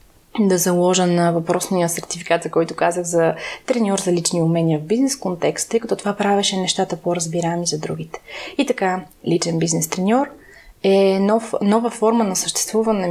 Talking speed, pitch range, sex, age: 165 wpm, 175-210 Hz, female, 20-39